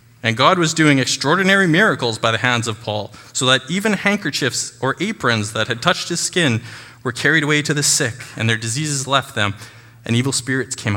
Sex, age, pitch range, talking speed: male, 20-39, 110-130 Hz, 200 wpm